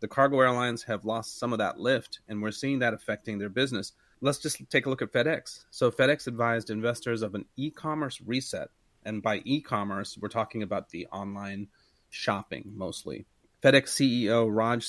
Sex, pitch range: male, 105-125 Hz